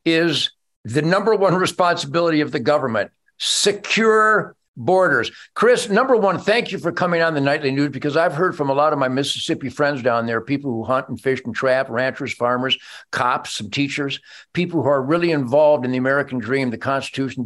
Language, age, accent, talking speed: English, 50-69, American, 195 wpm